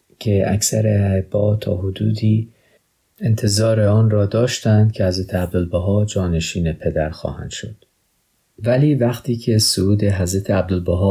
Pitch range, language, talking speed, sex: 95-115 Hz, Persian, 130 wpm, male